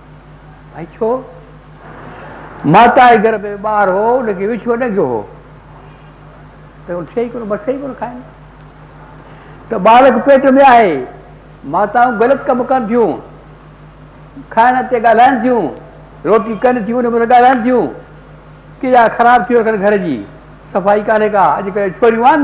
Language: Hindi